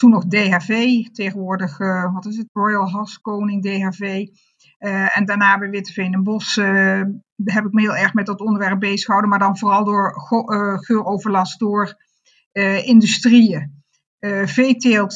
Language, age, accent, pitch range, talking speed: Dutch, 50-69, Dutch, 195-230 Hz, 160 wpm